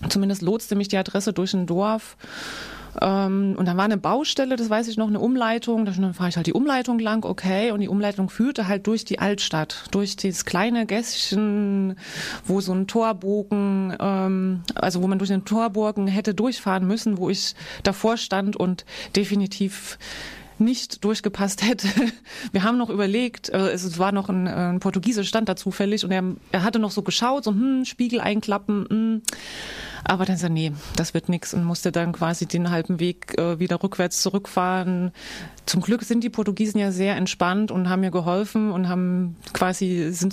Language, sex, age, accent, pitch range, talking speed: German, female, 30-49, German, 180-215 Hz, 180 wpm